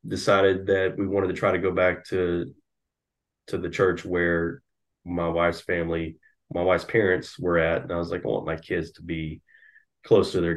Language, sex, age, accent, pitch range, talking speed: English, male, 20-39, American, 85-100 Hz, 200 wpm